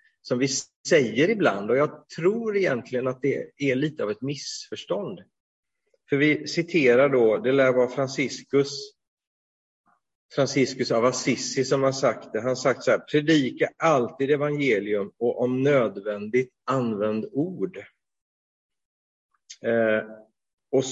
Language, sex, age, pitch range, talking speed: Swedish, male, 30-49, 115-145 Hz, 125 wpm